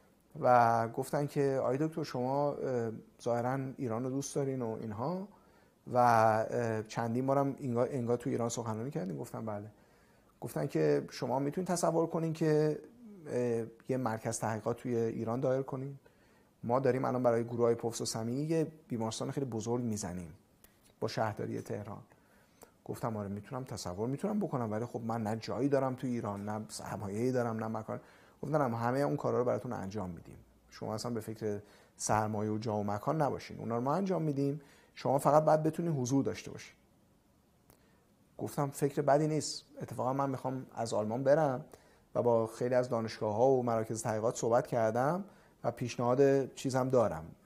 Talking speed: 160 wpm